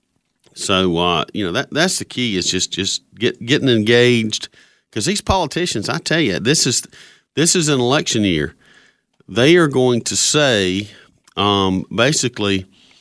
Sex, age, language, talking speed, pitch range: male, 40-59, English, 155 wpm, 110-170 Hz